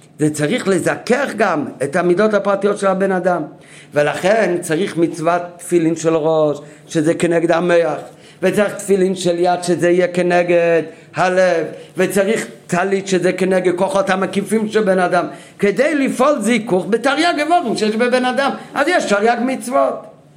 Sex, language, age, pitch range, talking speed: male, Hebrew, 50-69, 170-245 Hz, 140 wpm